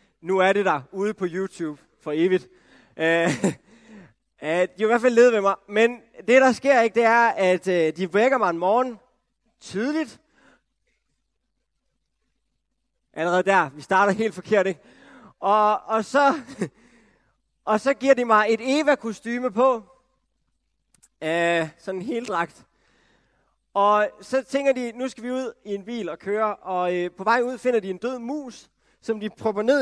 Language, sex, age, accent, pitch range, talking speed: Danish, male, 30-49, native, 195-255 Hz, 170 wpm